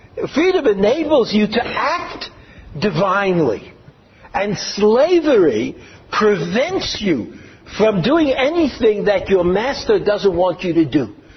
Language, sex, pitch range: English, male, 185-300 Hz